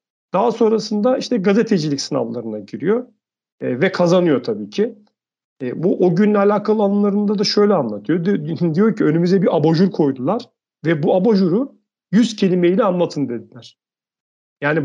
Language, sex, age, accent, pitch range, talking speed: Turkish, male, 40-59, native, 160-215 Hz, 140 wpm